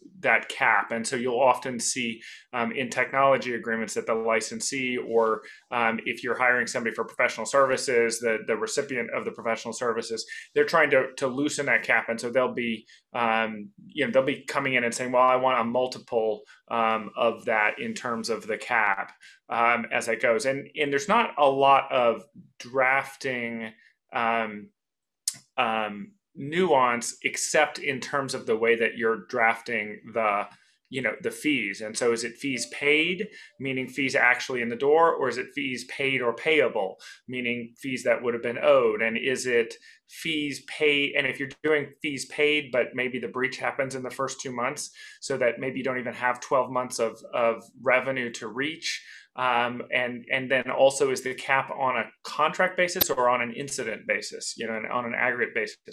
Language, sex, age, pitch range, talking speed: English, male, 30-49, 115-140 Hz, 190 wpm